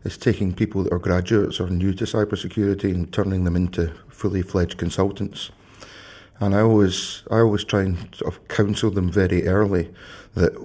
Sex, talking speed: male, 175 wpm